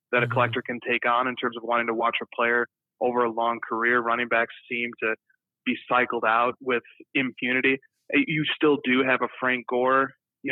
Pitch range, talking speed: 120-130 Hz, 200 wpm